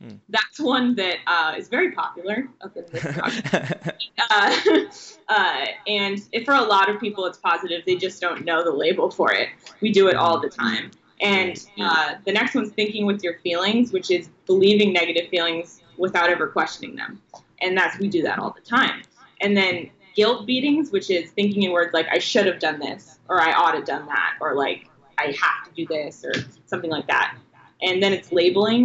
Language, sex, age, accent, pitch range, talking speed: English, female, 20-39, American, 170-210 Hz, 200 wpm